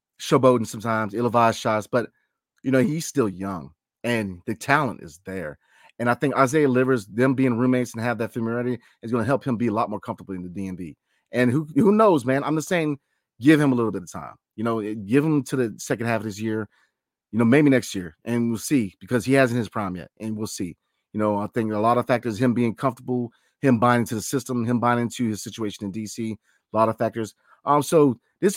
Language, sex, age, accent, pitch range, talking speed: English, male, 30-49, American, 110-140 Hz, 235 wpm